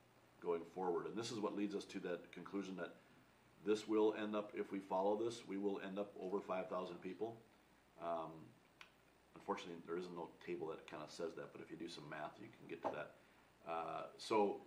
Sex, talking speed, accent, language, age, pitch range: male, 210 wpm, American, English, 40-59, 85-105 Hz